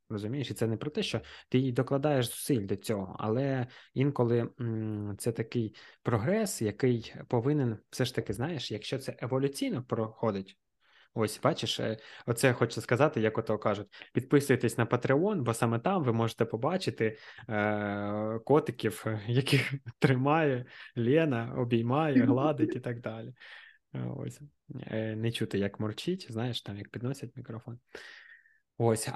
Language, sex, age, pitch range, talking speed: Ukrainian, male, 20-39, 110-135 Hz, 135 wpm